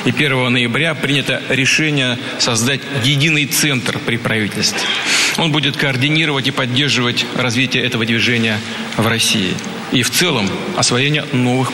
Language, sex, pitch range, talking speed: Russian, male, 125-145 Hz, 130 wpm